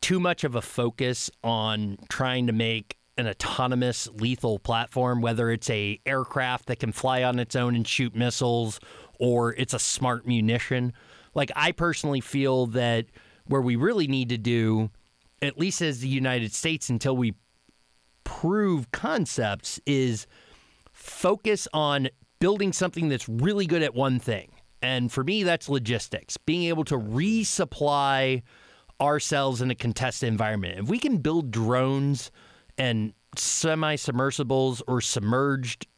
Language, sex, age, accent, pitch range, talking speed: English, male, 30-49, American, 120-145 Hz, 145 wpm